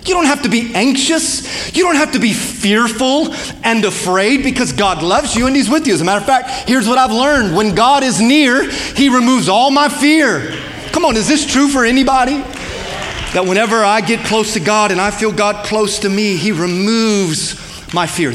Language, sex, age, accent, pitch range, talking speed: English, male, 30-49, American, 155-225 Hz, 215 wpm